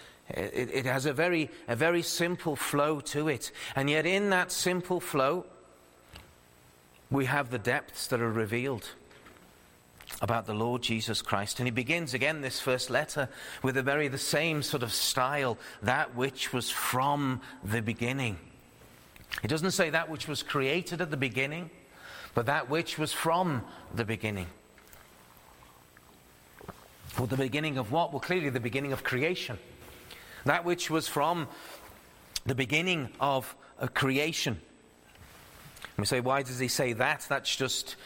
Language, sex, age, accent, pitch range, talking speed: English, male, 40-59, British, 100-145 Hz, 150 wpm